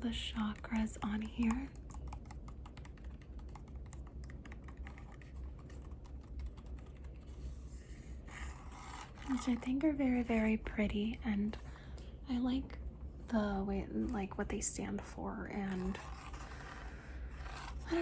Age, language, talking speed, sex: 30-49, English, 80 wpm, female